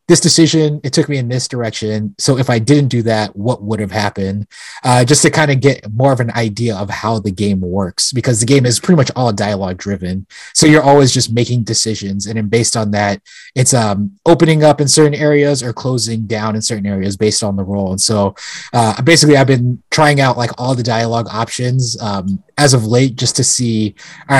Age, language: 20-39, English